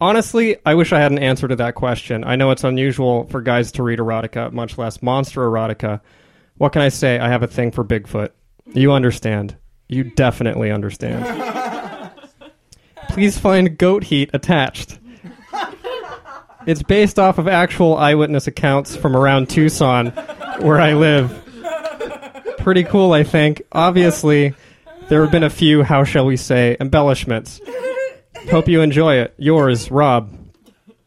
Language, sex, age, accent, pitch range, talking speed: English, male, 20-39, American, 125-175 Hz, 150 wpm